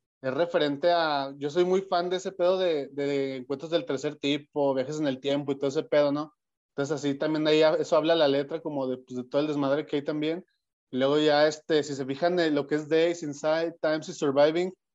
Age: 20-39